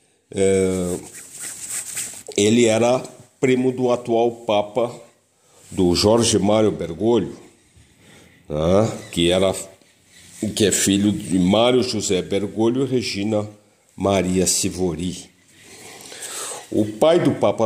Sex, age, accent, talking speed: male, 50-69, Brazilian, 100 wpm